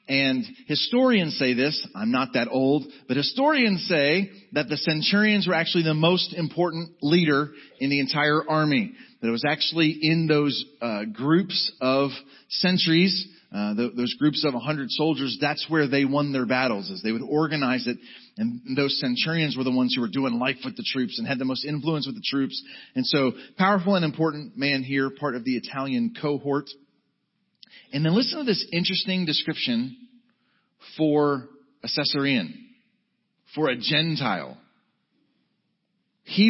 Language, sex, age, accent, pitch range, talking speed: English, male, 40-59, American, 145-210 Hz, 165 wpm